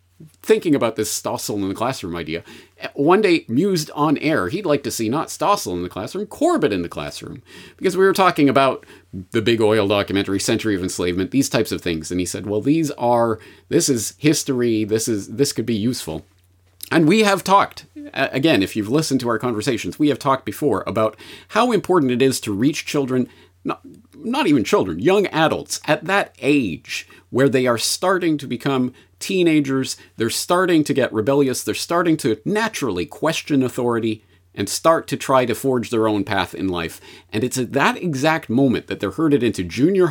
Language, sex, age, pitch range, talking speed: English, male, 40-59, 95-145 Hz, 195 wpm